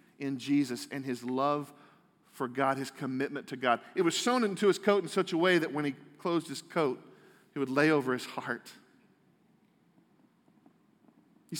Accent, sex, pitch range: American, male, 140-205 Hz